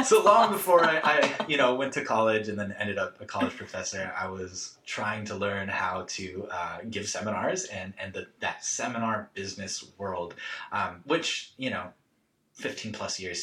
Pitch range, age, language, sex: 95-115 Hz, 20-39, English, male